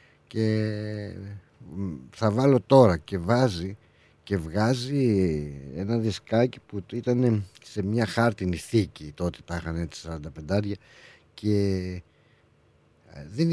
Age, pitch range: 50-69, 90-110 Hz